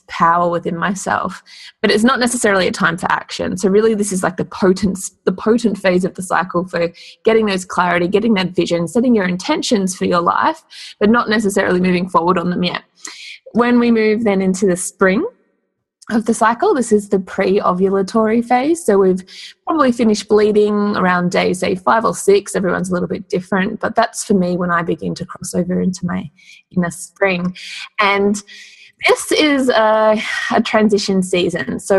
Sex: female